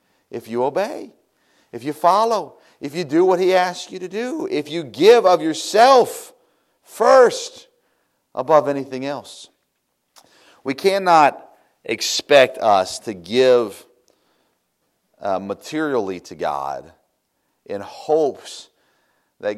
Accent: American